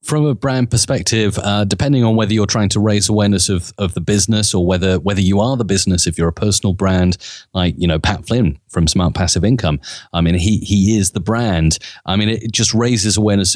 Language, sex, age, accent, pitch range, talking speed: English, male, 30-49, British, 95-110 Hz, 230 wpm